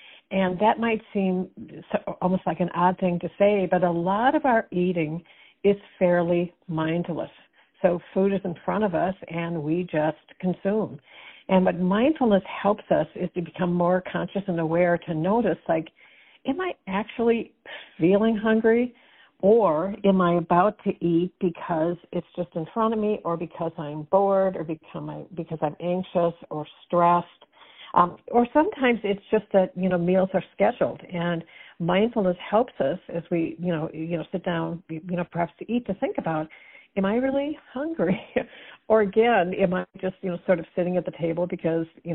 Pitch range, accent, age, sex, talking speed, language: 170-200 Hz, American, 60-79, female, 175 wpm, English